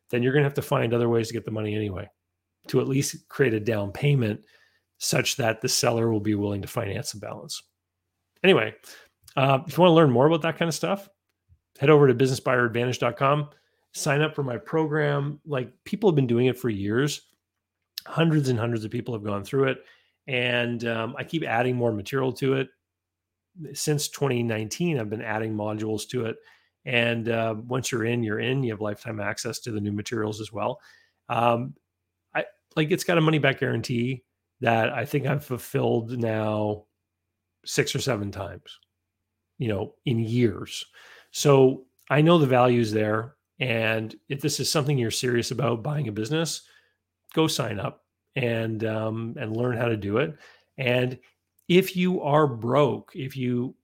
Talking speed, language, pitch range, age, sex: 180 wpm, English, 110-140 Hz, 30-49, male